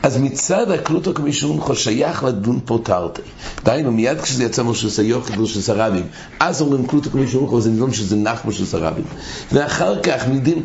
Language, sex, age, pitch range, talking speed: English, male, 60-79, 110-155 Hz, 165 wpm